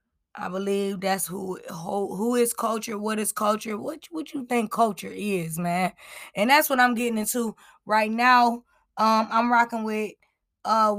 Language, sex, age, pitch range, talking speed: English, female, 20-39, 205-250 Hz, 170 wpm